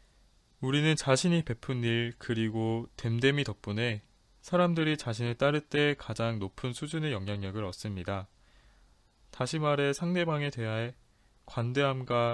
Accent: native